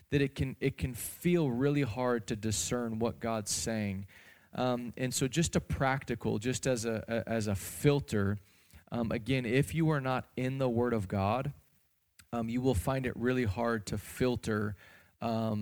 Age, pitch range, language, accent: 20-39, 105-120 Hz, English, American